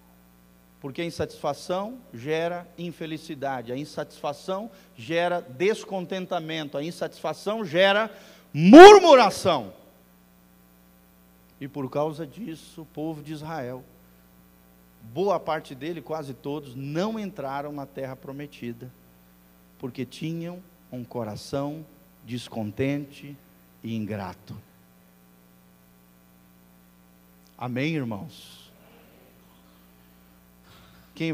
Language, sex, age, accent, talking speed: Portuguese, male, 50-69, Brazilian, 80 wpm